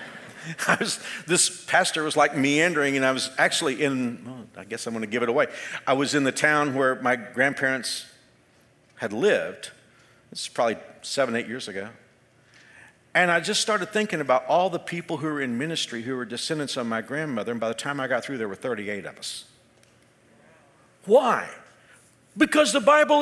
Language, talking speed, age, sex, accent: English, 190 wpm, 50-69, male, American